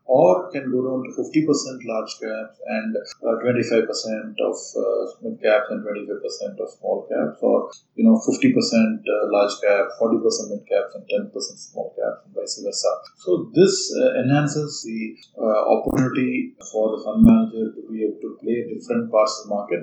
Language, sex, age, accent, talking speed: English, male, 30-49, Indian, 175 wpm